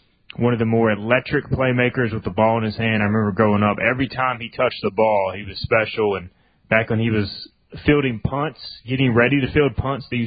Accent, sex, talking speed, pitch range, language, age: American, male, 220 wpm, 105-125 Hz, English, 20-39